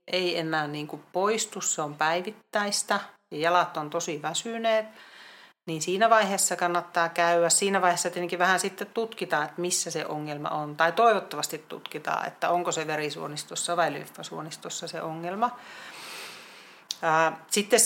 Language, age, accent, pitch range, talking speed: Finnish, 40-59, native, 155-185 Hz, 140 wpm